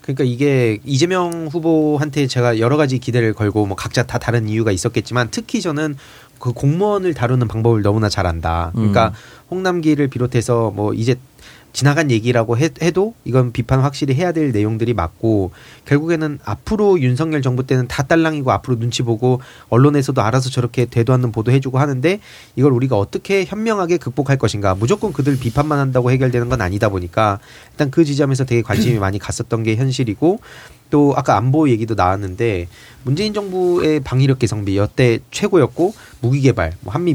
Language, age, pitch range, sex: Korean, 30-49, 110-145 Hz, male